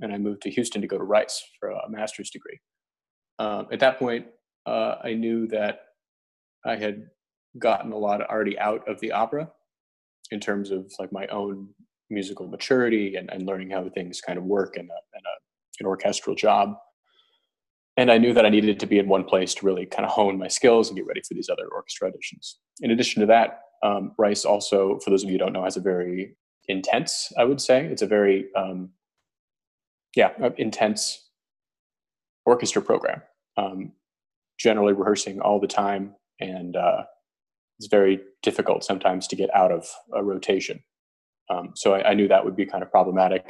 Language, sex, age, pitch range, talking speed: English, male, 30-49, 95-115 Hz, 190 wpm